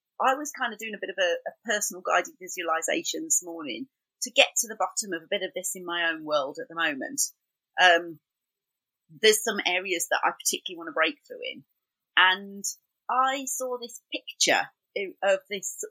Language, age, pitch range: English, 30-49, 190-285 Hz